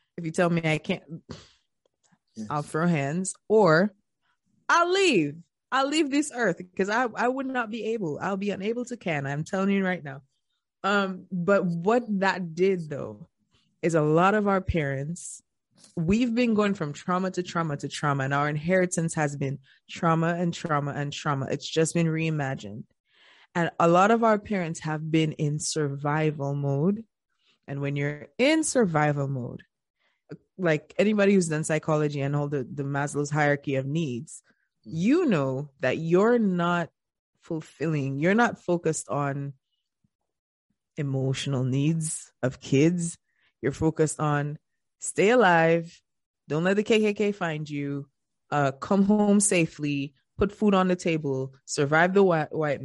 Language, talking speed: English, 155 wpm